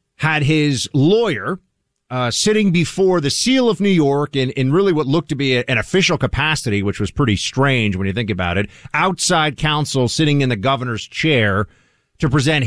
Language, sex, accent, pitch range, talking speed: English, male, American, 125-185 Hz, 185 wpm